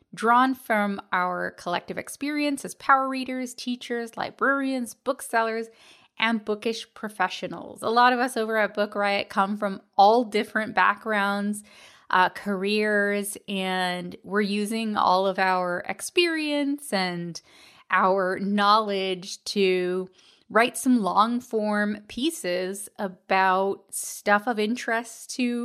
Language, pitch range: English, 195-240 Hz